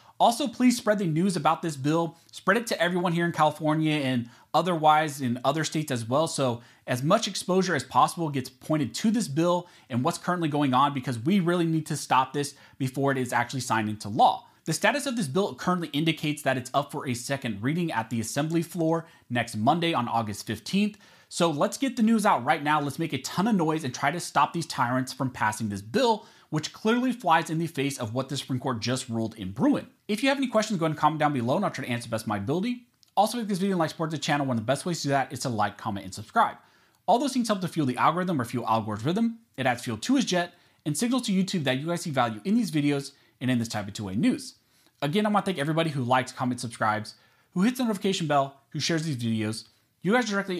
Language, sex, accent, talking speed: English, male, American, 255 wpm